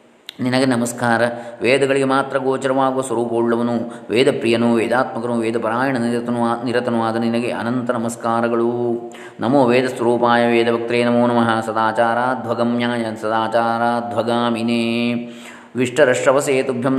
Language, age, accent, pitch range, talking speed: Kannada, 20-39, native, 115-125 Hz, 90 wpm